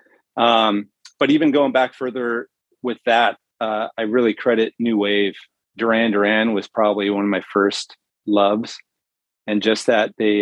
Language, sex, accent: English, male, American